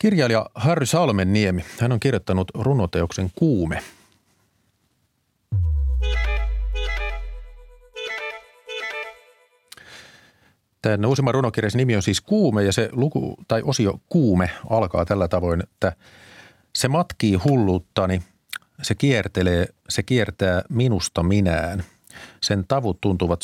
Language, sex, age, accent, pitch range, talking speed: Finnish, male, 40-59, native, 90-120 Hz, 90 wpm